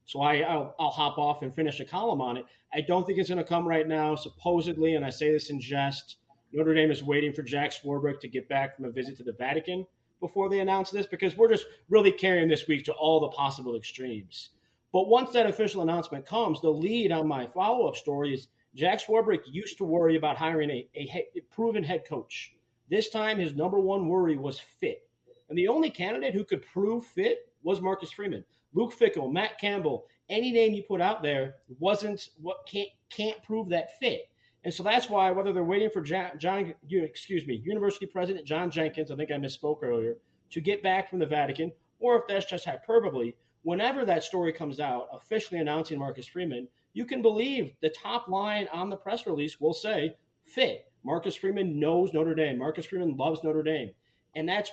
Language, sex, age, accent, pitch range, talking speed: English, male, 30-49, American, 150-205 Hz, 210 wpm